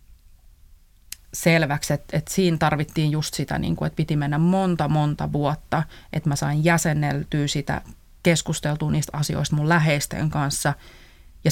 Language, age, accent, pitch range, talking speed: Finnish, 30-49, native, 130-160 Hz, 140 wpm